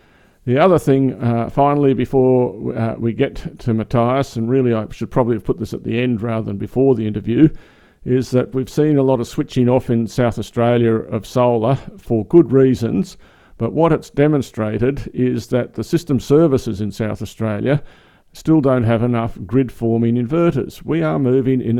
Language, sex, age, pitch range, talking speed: English, male, 50-69, 115-130 Hz, 180 wpm